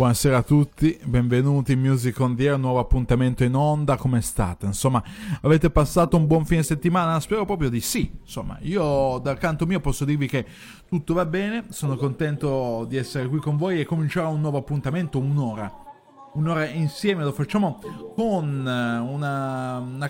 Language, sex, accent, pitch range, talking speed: Italian, male, native, 130-160 Hz, 175 wpm